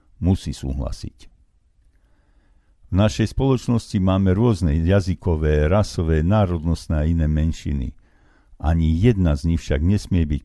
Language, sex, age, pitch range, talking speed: Slovak, male, 60-79, 80-110 Hz, 115 wpm